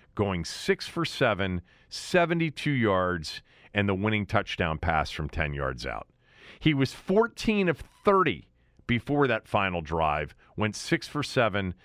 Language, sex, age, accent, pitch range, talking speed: English, male, 40-59, American, 95-140 Hz, 115 wpm